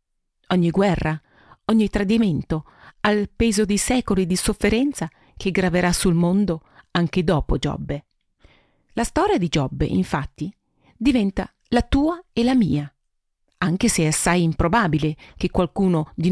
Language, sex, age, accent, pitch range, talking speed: Italian, female, 40-59, native, 160-220 Hz, 130 wpm